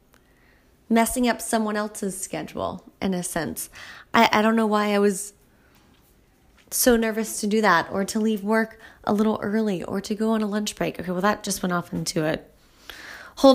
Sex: female